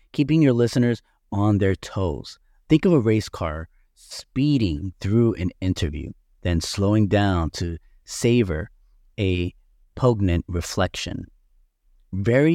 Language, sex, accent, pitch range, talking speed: English, male, American, 85-125 Hz, 115 wpm